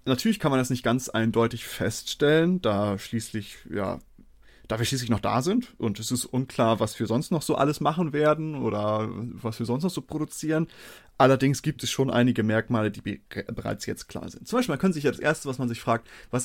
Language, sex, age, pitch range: German, male, 30-49, 110-135 Hz